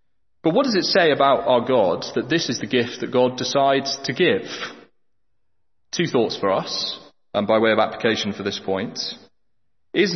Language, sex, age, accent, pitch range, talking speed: English, male, 30-49, British, 120-170 Hz, 185 wpm